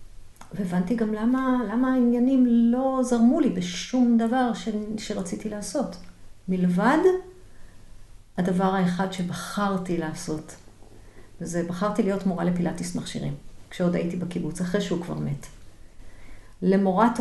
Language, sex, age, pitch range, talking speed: Hebrew, female, 50-69, 170-220 Hz, 110 wpm